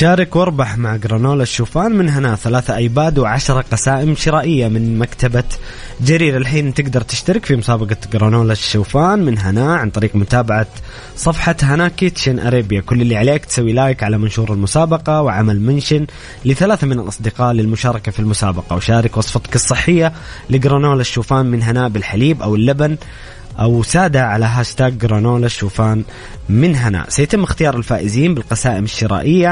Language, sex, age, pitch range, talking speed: English, male, 20-39, 110-140 Hz, 140 wpm